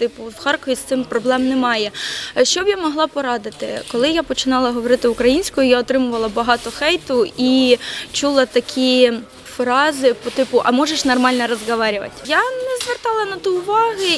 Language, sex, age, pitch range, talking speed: Ukrainian, female, 20-39, 240-295 Hz, 150 wpm